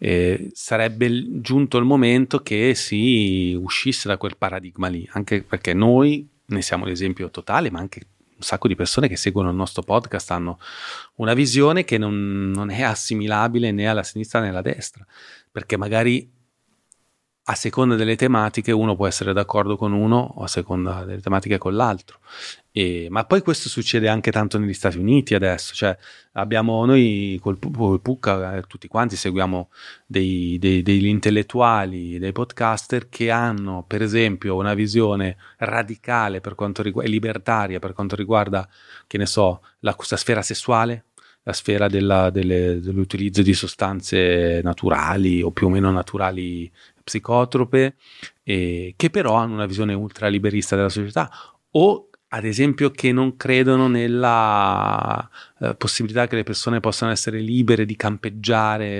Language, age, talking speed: Italian, 30-49, 150 wpm